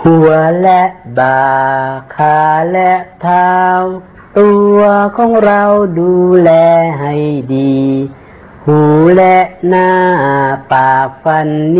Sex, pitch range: female, 140-195 Hz